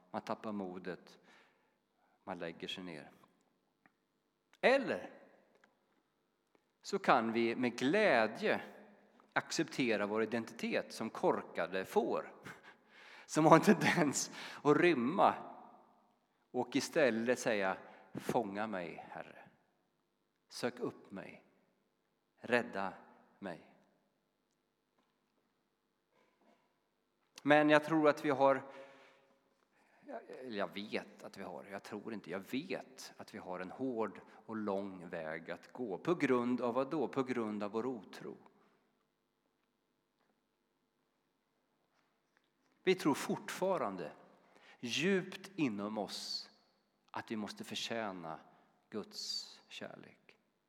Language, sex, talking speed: Swedish, male, 100 wpm